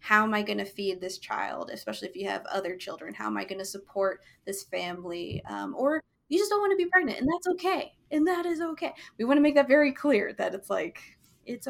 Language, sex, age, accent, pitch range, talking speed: English, female, 20-39, American, 190-245 Hz, 250 wpm